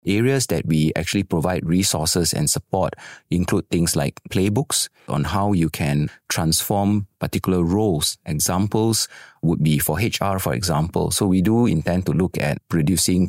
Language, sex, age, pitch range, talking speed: English, male, 30-49, 80-105 Hz, 155 wpm